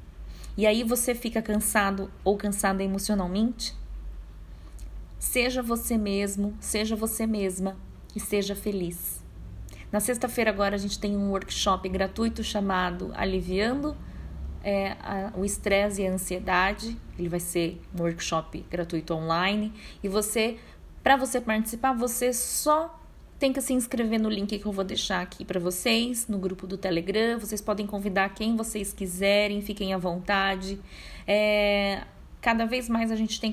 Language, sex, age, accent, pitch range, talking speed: Portuguese, female, 20-39, Brazilian, 190-230 Hz, 140 wpm